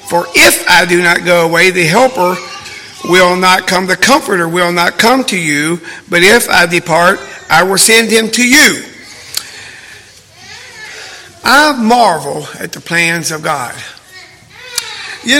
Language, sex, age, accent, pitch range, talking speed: English, male, 50-69, American, 185-280 Hz, 145 wpm